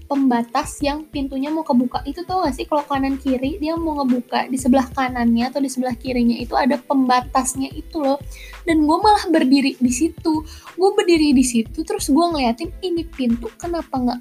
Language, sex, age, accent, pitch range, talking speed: Indonesian, female, 10-29, native, 250-320 Hz, 185 wpm